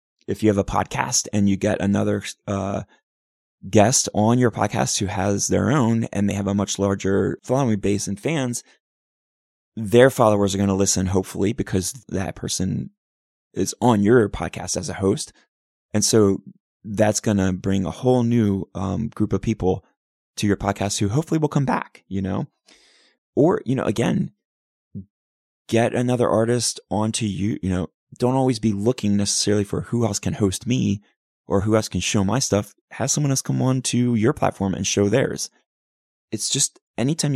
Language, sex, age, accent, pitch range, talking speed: English, male, 20-39, American, 95-110 Hz, 180 wpm